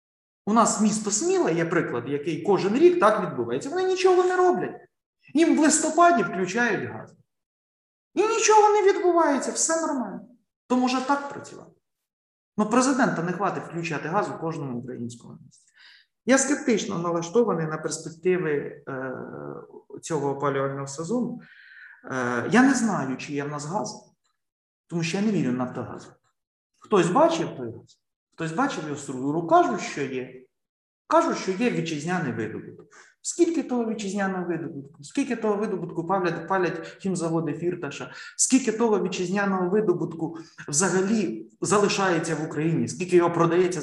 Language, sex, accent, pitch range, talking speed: Ukrainian, male, native, 160-245 Hz, 140 wpm